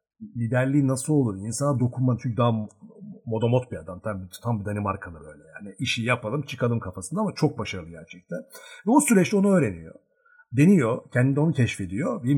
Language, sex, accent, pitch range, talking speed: Turkish, male, native, 110-165 Hz, 175 wpm